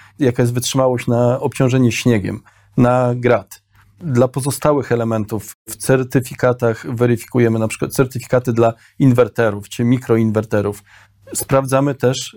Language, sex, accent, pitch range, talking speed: Polish, male, native, 115-135 Hz, 110 wpm